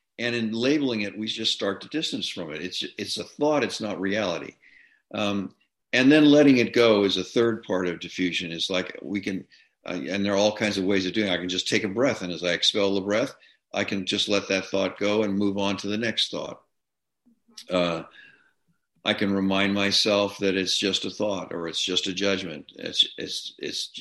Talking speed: 220 wpm